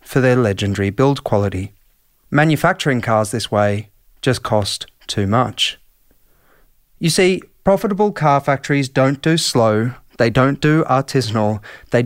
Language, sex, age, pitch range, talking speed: English, male, 30-49, 110-150 Hz, 130 wpm